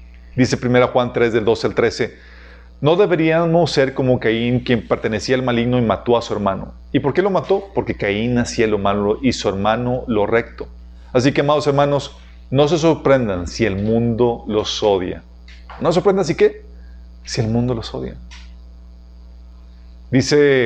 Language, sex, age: Spanish, male, 40-59